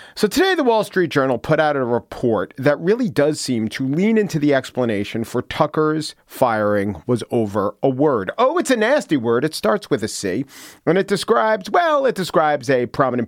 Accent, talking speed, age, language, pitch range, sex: American, 200 wpm, 40-59, English, 125-185 Hz, male